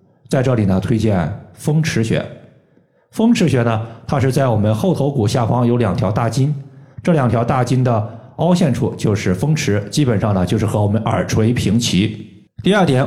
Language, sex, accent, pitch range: Chinese, male, native, 105-140 Hz